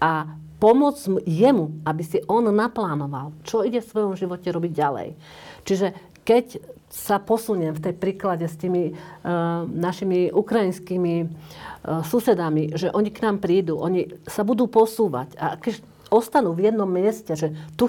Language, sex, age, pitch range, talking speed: Slovak, female, 50-69, 170-210 Hz, 145 wpm